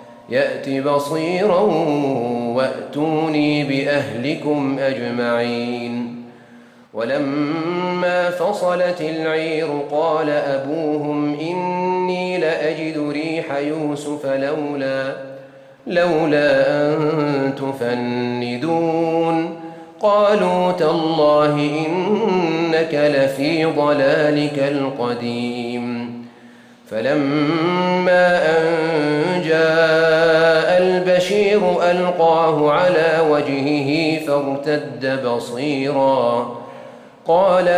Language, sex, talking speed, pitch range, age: Arabic, male, 55 wpm, 135-160 Hz, 30-49